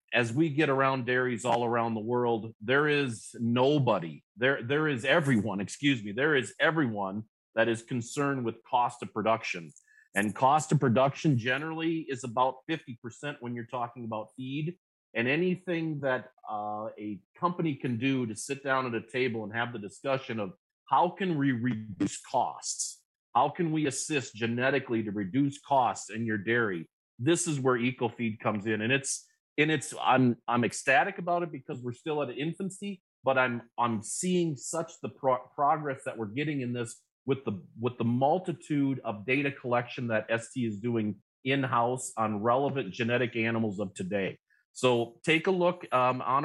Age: 40-59